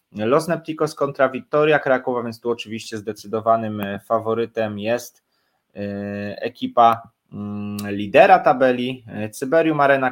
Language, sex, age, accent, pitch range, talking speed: Polish, male, 20-39, native, 105-130 Hz, 95 wpm